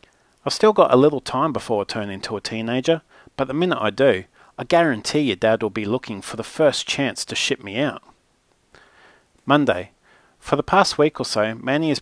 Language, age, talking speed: English, 40-59, 205 wpm